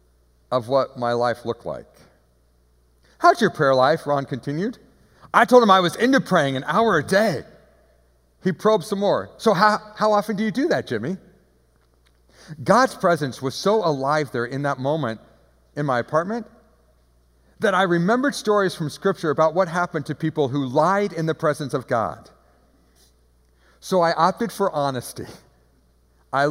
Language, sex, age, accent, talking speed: English, male, 50-69, American, 165 wpm